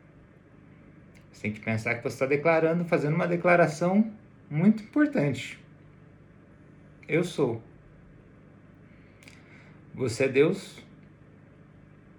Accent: Brazilian